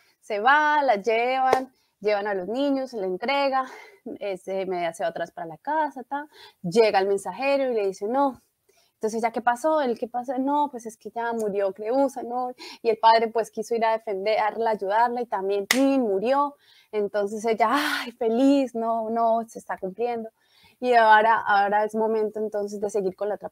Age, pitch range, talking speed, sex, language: 20-39, 195-245 Hz, 185 wpm, female, Spanish